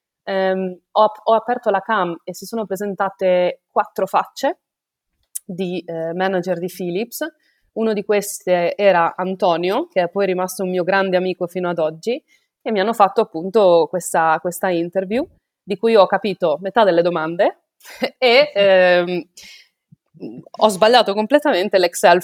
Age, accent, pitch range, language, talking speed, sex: 20-39, native, 180-215 Hz, Italian, 145 wpm, female